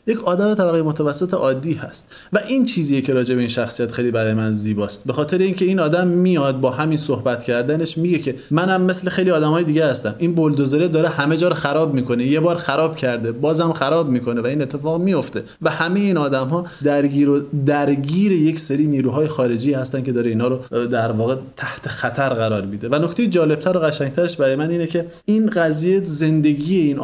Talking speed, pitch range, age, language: 200 wpm, 125-160 Hz, 20-39, Persian